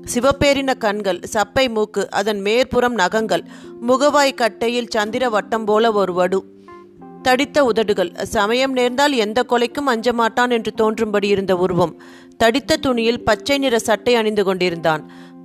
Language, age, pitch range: Tamil, 30-49, 200-245 Hz